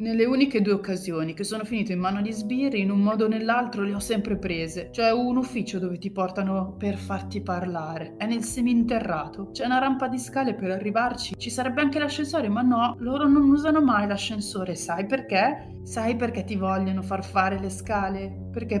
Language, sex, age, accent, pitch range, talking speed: Italian, female, 30-49, native, 180-230 Hz, 195 wpm